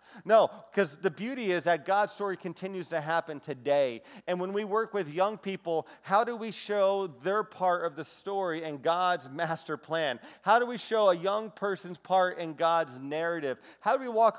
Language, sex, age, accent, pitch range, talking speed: English, male, 40-59, American, 160-205 Hz, 195 wpm